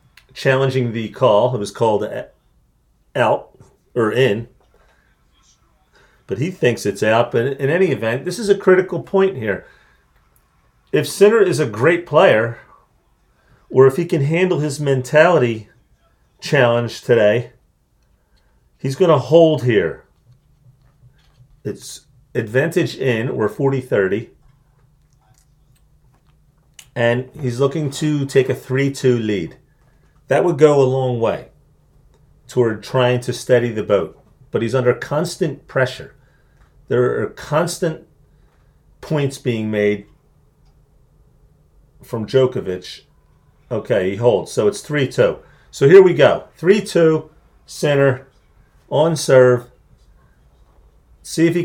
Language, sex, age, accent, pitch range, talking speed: English, male, 40-59, American, 120-155 Hz, 115 wpm